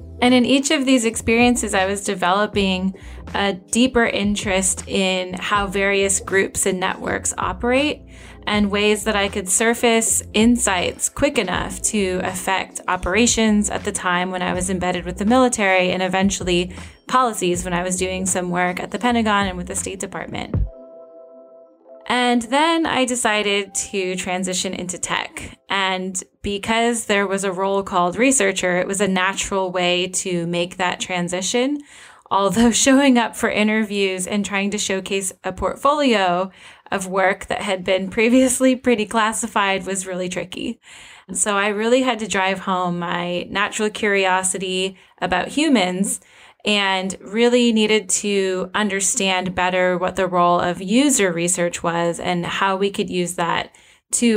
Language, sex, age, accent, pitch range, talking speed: English, female, 10-29, American, 185-225 Hz, 150 wpm